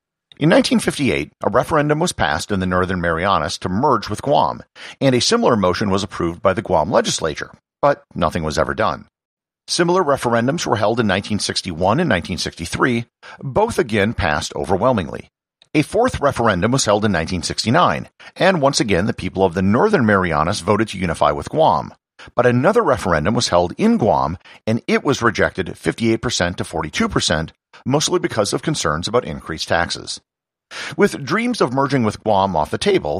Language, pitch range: English, 90-135 Hz